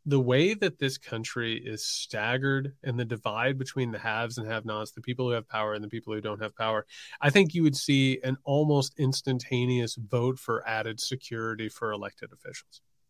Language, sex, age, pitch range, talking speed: English, male, 30-49, 120-165 Hz, 190 wpm